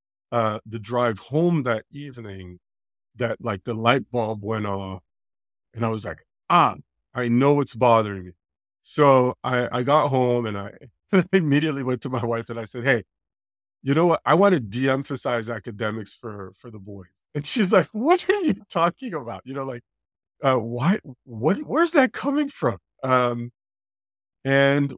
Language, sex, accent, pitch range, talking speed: English, male, American, 100-130 Hz, 175 wpm